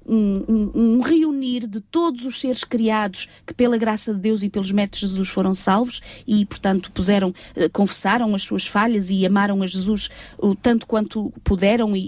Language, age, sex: Portuguese, 20-39, female